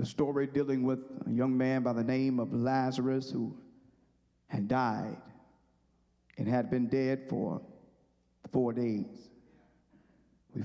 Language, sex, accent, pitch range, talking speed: English, male, American, 125-145 Hz, 130 wpm